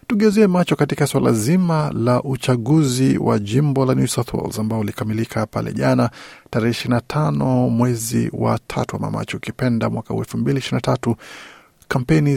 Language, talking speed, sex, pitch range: Swahili, 155 wpm, male, 115-140 Hz